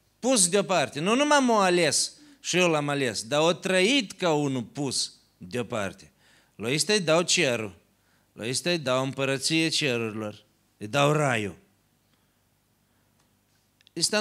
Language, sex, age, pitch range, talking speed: Romanian, male, 40-59, 110-165 Hz, 140 wpm